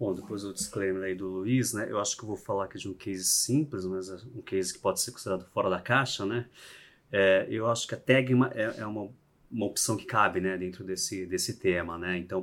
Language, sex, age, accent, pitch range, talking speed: Portuguese, male, 30-49, Brazilian, 90-105 Hz, 245 wpm